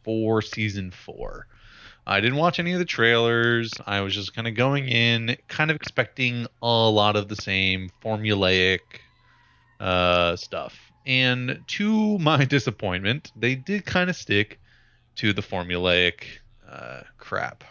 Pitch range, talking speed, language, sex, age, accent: 100-125 Hz, 140 wpm, English, male, 20-39, American